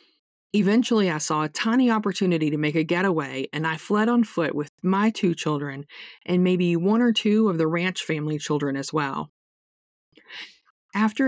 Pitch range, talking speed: 155-195 Hz, 170 wpm